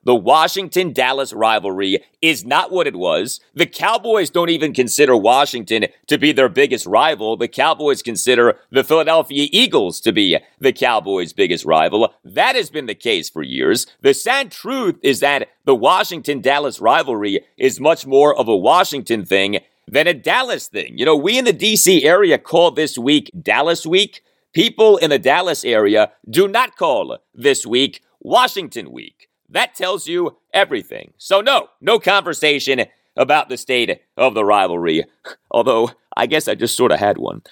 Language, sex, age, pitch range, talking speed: English, male, 40-59, 120-190 Hz, 165 wpm